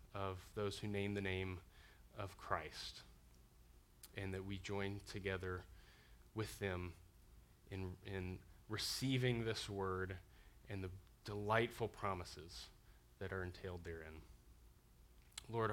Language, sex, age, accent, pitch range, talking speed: English, male, 20-39, American, 95-115 Hz, 110 wpm